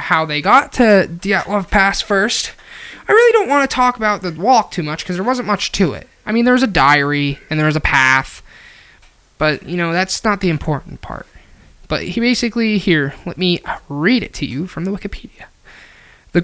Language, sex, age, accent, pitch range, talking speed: English, male, 20-39, American, 150-205 Hz, 210 wpm